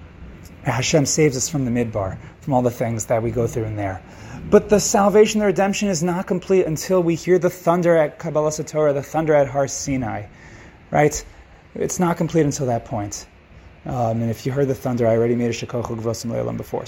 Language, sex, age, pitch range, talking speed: English, male, 30-49, 120-180 Hz, 205 wpm